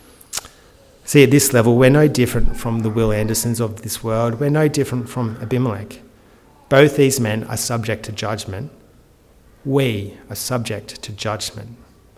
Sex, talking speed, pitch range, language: male, 155 wpm, 110-140 Hz, English